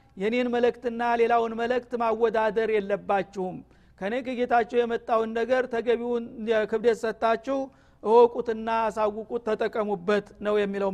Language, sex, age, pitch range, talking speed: Amharic, male, 50-69, 215-250 Hz, 100 wpm